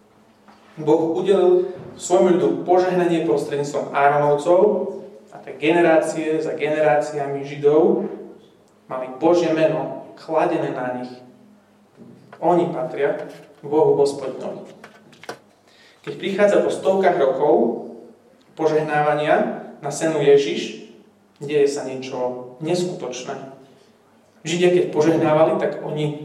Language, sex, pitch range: Slovak, male, 140-175 Hz